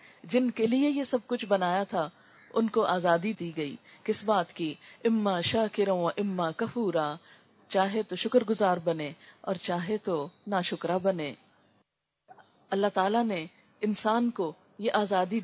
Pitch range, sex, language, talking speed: 190-245 Hz, female, Urdu, 95 wpm